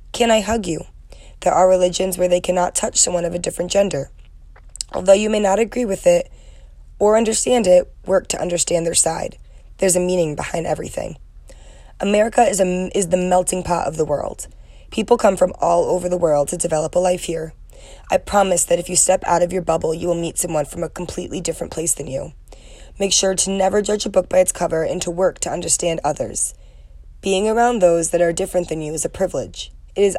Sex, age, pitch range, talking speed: female, 20-39, 165-190 Hz, 215 wpm